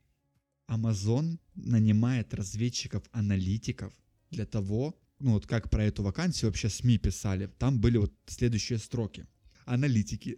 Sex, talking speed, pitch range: male, 115 wpm, 105-120 Hz